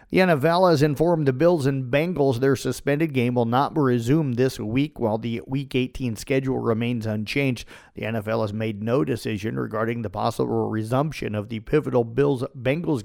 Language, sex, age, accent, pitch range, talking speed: English, male, 50-69, American, 115-140 Hz, 170 wpm